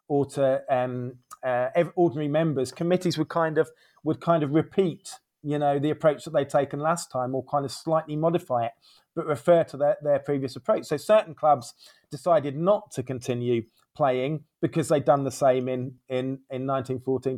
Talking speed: 185 wpm